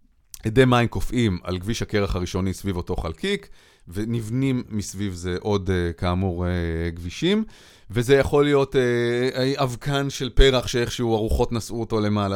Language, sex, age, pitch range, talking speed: Hebrew, male, 30-49, 100-140 Hz, 130 wpm